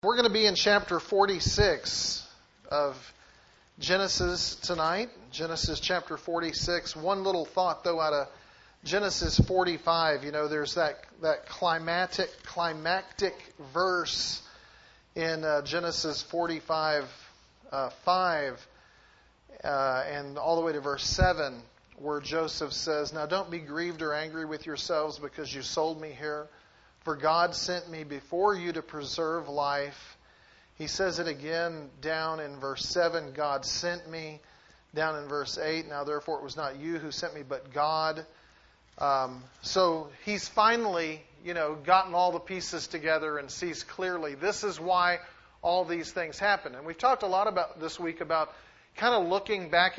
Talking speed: 155 wpm